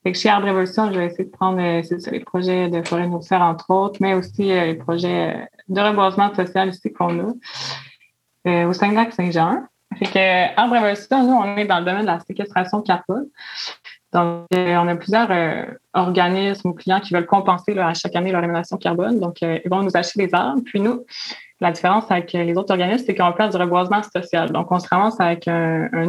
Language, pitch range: French, 175-200 Hz